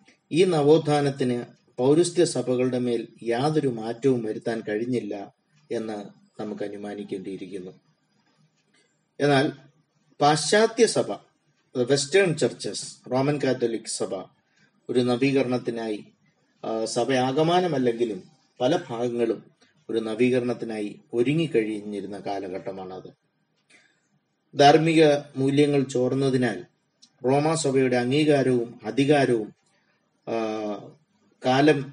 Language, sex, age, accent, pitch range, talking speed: Malayalam, male, 20-39, native, 115-150 Hz, 70 wpm